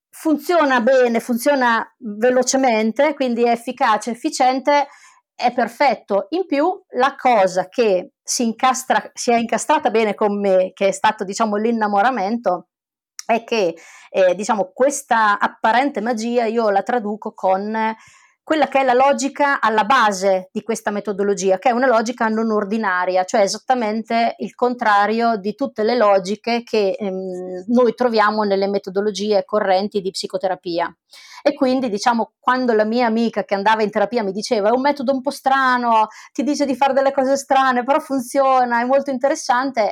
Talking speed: 155 wpm